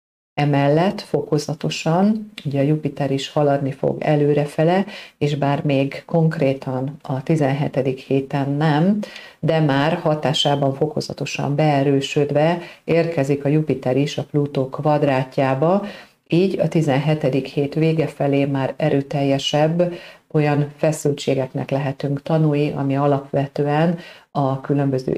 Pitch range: 135-155 Hz